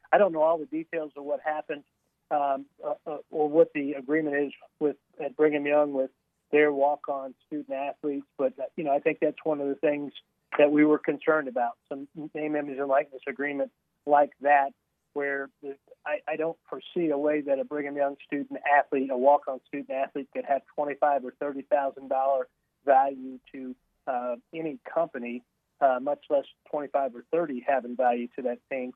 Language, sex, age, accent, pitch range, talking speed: English, male, 40-59, American, 135-155 Hz, 180 wpm